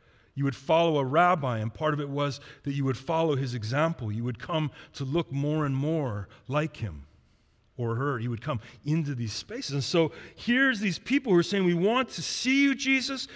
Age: 40-59